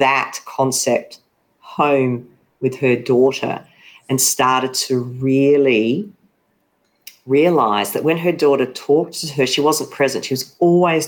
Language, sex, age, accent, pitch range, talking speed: English, female, 40-59, Australian, 140-195 Hz, 130 wpm